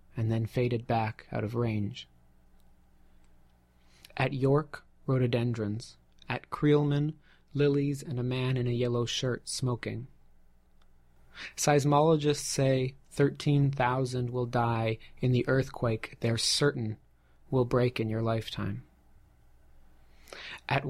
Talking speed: 105 wpm